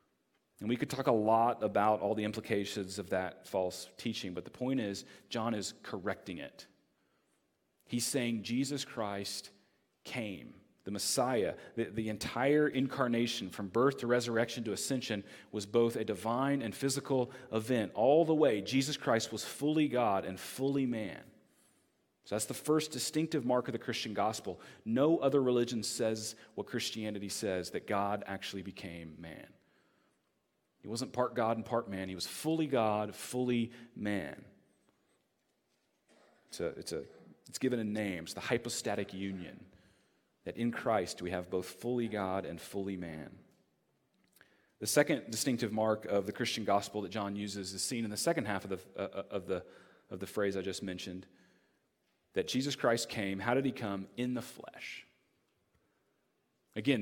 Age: 40-59